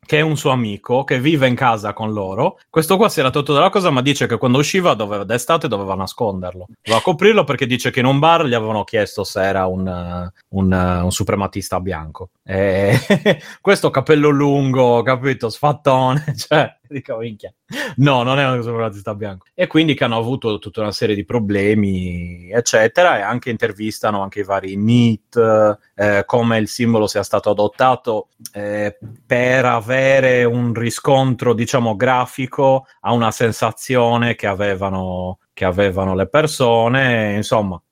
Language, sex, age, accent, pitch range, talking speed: Italian, male, 30-49, native, 100-130 Hz, 160 wpm